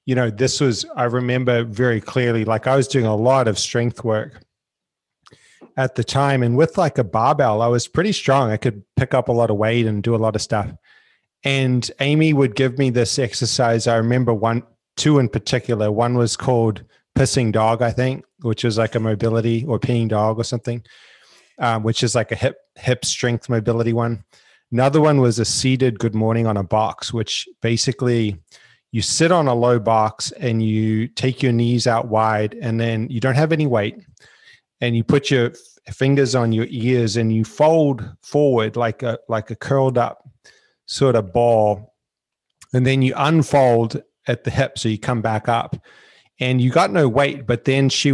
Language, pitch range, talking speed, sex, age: English, 115-130 Hz, 195 wpm, male, 30-49